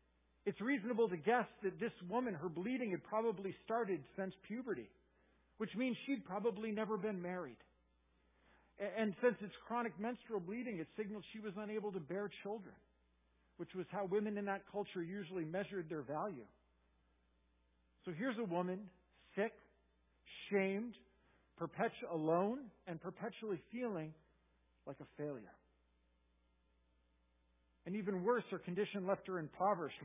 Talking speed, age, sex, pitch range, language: 135 wpm, 50-69, male, 155-225 Hz, English